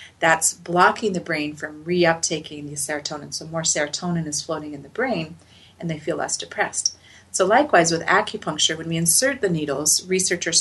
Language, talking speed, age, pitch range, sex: English, 175 wpm, 30-49, 150-185 Hz, female